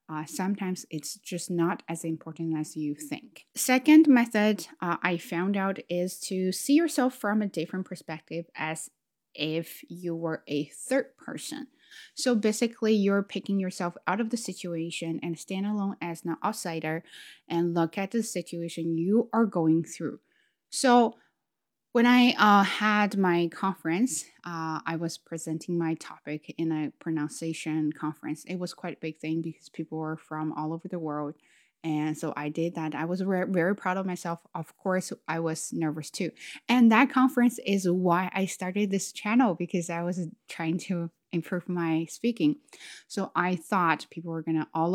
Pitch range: 160-205 Hz